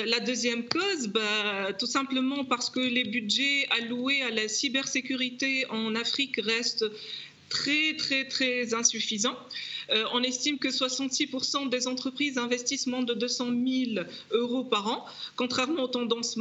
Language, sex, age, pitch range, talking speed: French, female, 40-59, 230-270 Hz, 145 wpm